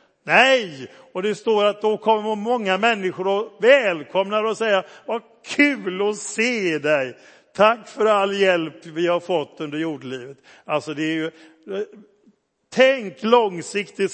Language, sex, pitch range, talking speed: Swedish, male, 175-225 Hz, 125 wpm